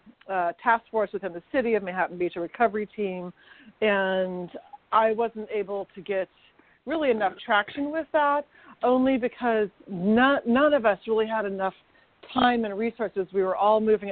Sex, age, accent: female, 40-59, American